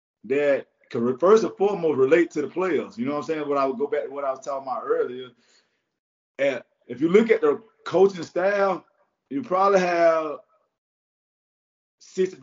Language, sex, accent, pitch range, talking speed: English, male, American, 155-195 Hz, 180 wpm